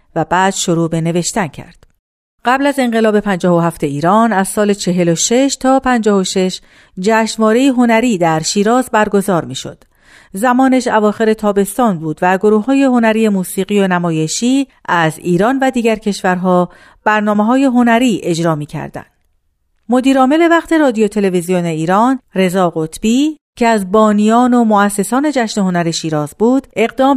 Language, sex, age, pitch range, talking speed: Persian, female, 40-59, 175-240 Hz, 140 wpm